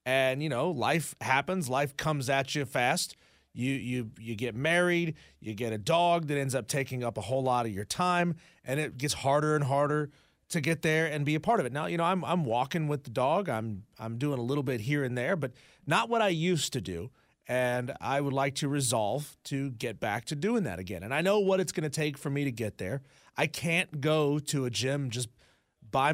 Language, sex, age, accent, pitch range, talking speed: English, male, 30-49, American, 125-155 Hz, 240 wpm